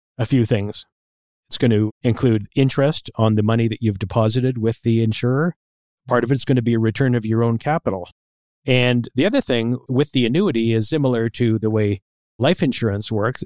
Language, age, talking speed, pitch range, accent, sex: English, 50-69, 195 wpm, 110-130 Hz, American, male